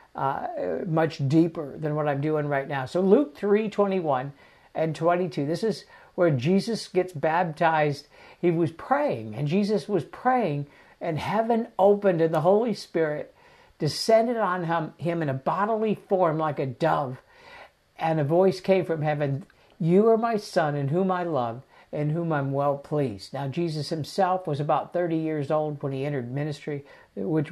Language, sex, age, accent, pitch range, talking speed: English, male, 60-79, American, 150-195 Hz, 170 wpm